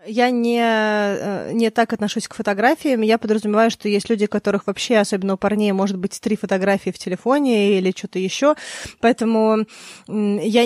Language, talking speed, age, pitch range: Russian, 160 wpm, 20-39, 195-230 Hz